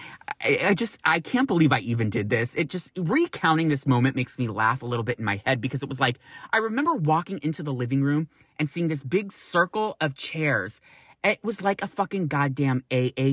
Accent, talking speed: American, 215 wpm